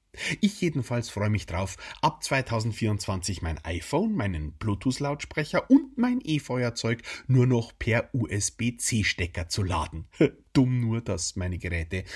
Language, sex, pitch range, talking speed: German, male, 95-155 Hz, 125 wpm